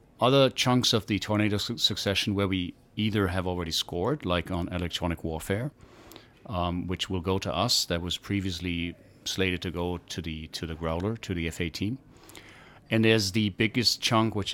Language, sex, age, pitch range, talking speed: English, male, 40-59, 90-110 Hz, 180 wpm